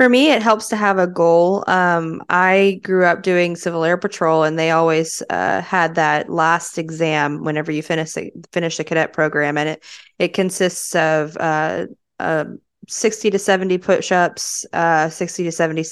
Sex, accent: female, American